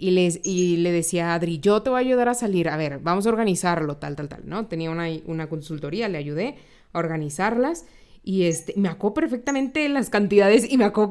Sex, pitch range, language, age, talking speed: female, 175-235 Hz, Spanish, 20-39, 225 wpm